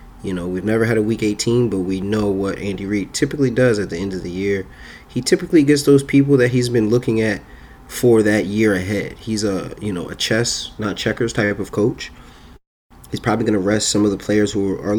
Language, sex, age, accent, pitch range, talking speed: English, male, 30-49, American, 100-120 Hz, 230 wpm